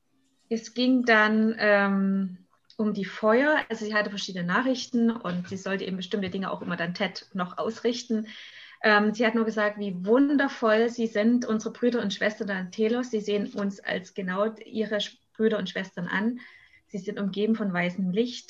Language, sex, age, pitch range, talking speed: English, female, 20-39, 195-225 Hz, 180 wpm